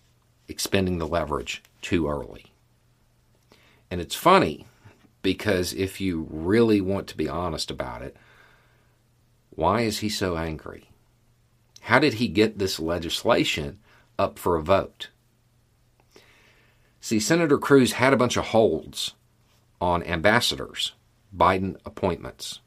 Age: 50-69